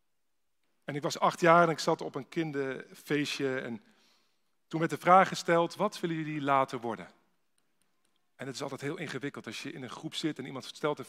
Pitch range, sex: 130-170 Hz, male